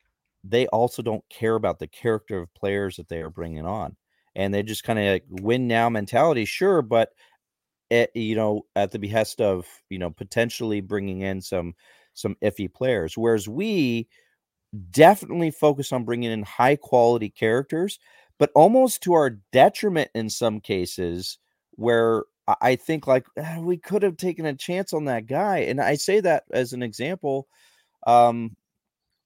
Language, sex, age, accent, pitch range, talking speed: English, male, 40-59, American, 95-125 Hz, 160 wpm